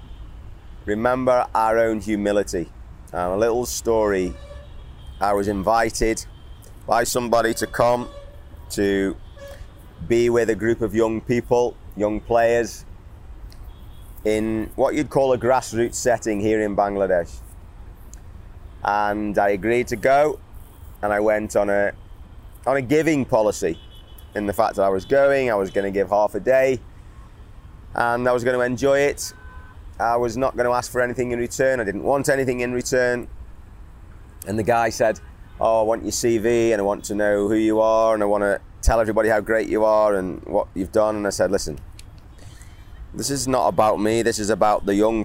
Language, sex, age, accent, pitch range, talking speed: English, male, 30-49, British, 90-115 Hz, 170 wpm